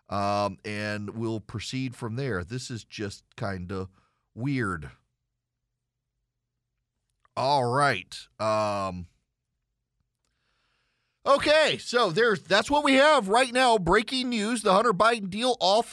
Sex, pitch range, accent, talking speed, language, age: male, 115-155 Hz, American, 115 wpm, English, 40-59